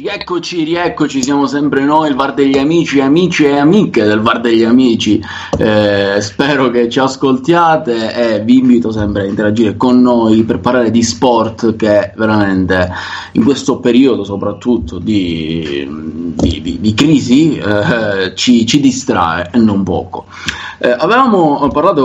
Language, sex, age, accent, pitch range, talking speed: Italian, male, 20-39, native, 105-130 Hz, 145 wpm